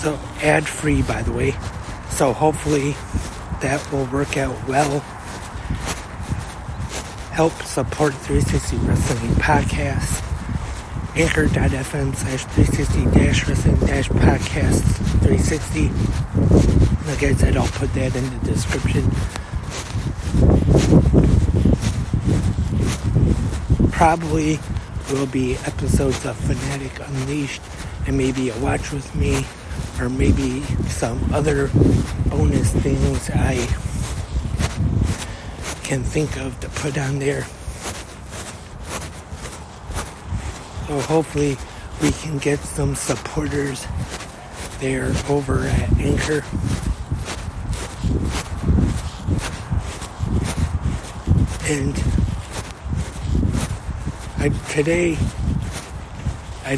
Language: English